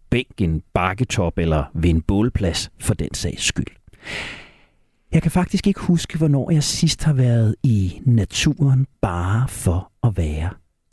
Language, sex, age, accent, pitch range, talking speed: Danish, male, 40-59, native, 100-160 Hz, 150 wpm